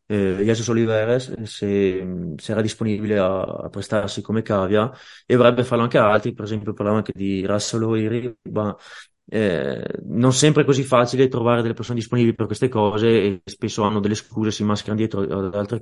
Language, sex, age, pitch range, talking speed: Italian, male, 20-39, 105-120 Hz, 180 wpm